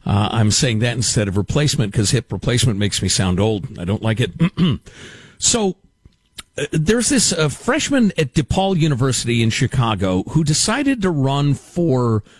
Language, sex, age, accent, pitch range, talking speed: English, male, 50-69, American, 110-160 Hz, 165 wpm